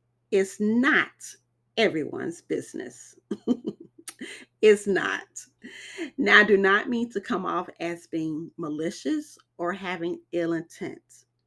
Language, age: English, 40-59